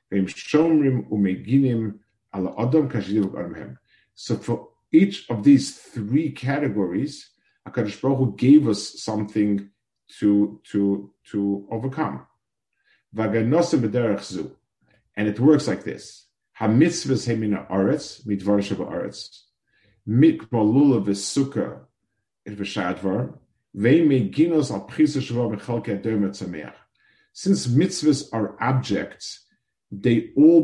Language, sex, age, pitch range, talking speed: English, male, 50-69, 100-130 Hz, 50 wpm